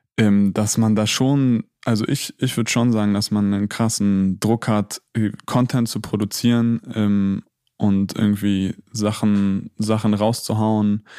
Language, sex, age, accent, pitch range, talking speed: German, male, 20-39, German, 100-110 Hz, 140 wpm